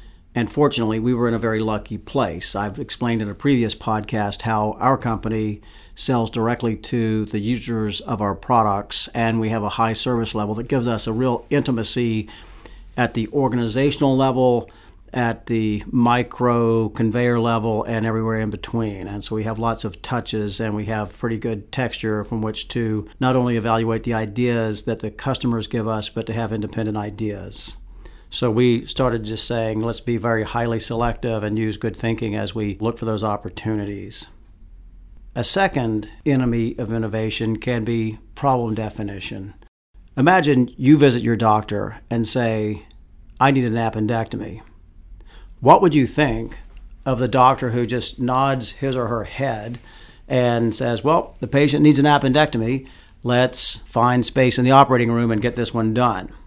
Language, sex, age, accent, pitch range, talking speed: English, male, 50-69, American, 110-125 Hz, 165 wpm